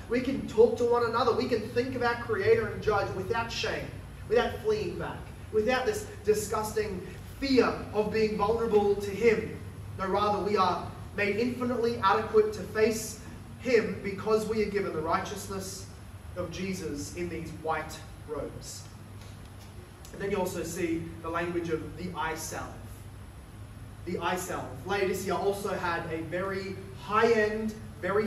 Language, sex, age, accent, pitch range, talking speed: English, male, 20-39, Australian, 160-230 Hz, 145 wpm